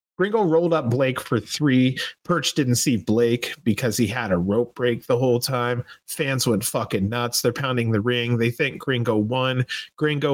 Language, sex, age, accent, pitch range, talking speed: English, male, 30-49, American, 120-155 Hz, 185 wpm